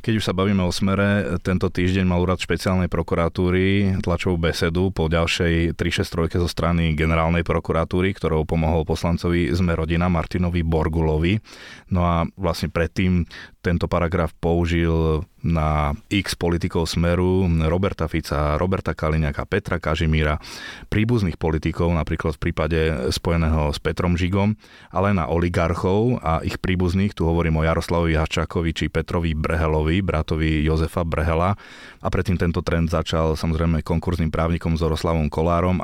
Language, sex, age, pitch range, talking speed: Slovak, male, 20-39, 80-95 Hz, 135 wpm